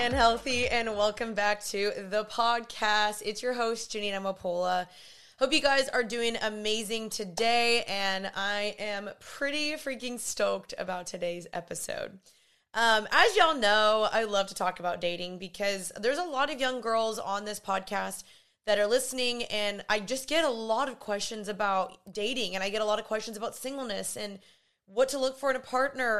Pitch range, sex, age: 200-240 Hz, female, 20-39